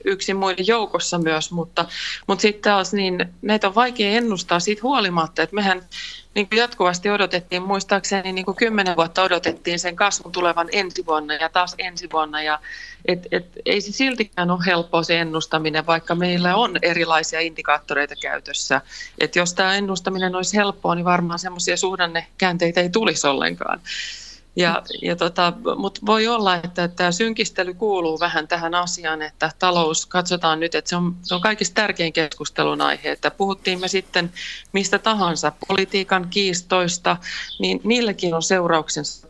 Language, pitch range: Finnish, 160-190 Hz